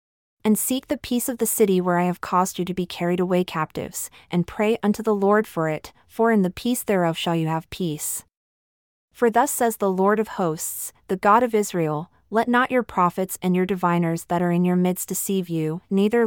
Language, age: English, 30-49